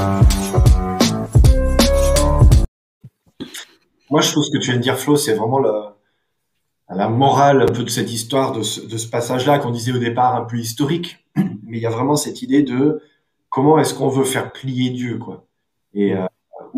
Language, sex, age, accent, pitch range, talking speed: French, male, 20-39, French, 120-150 Hz, 180 wpm